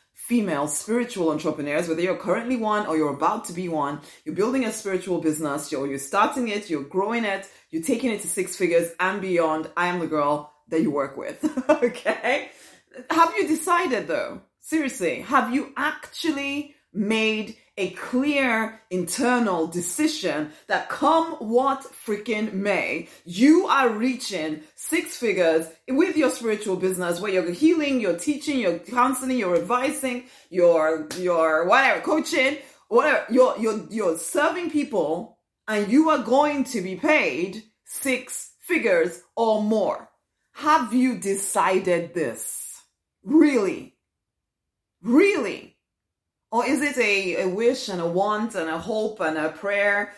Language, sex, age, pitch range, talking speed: English, female, 30-49, 185-265 Hz, 145 wpm